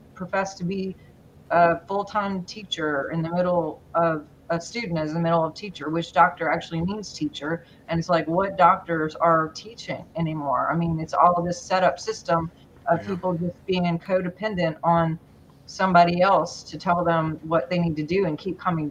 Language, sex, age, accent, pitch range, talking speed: English, female, 30-49, American, 165-185 Hz, 180 wpm